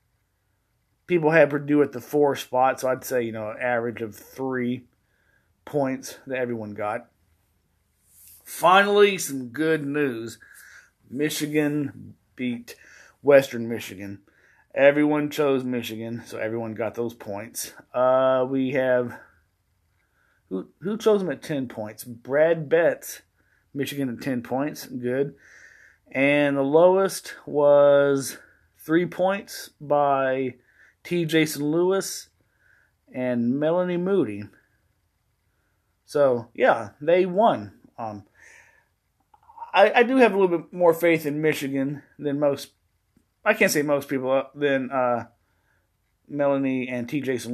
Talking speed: 120 wpm